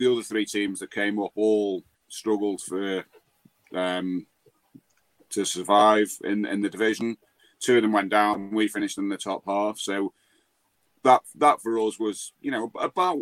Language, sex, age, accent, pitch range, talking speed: English, male, 40-59, British, 95-110 Hz, 170 wpm